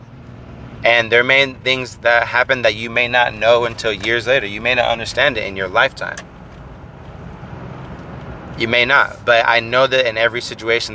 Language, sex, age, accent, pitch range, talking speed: English, male, 30-49, American, 105-120 Hz, 175 wpm